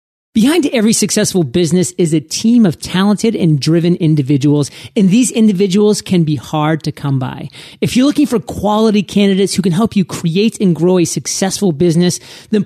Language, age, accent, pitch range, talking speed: English, 30-49, American, 160-210 Hz, 180 wpm